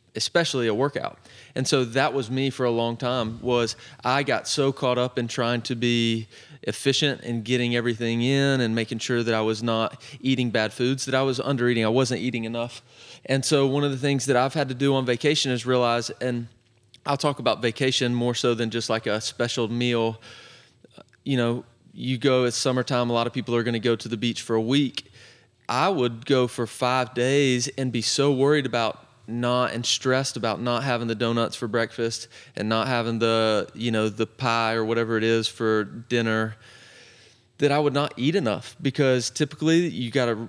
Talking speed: 205 wpm